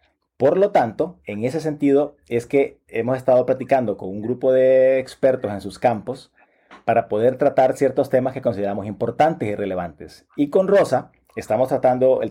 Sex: male